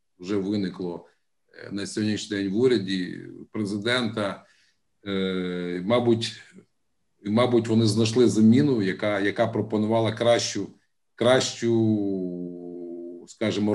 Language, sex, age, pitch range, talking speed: Ukrainian, male, 50-69, 100-125 Hz, 85 wpm